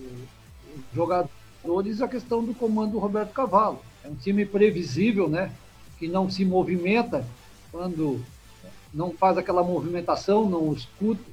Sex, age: male, 60-79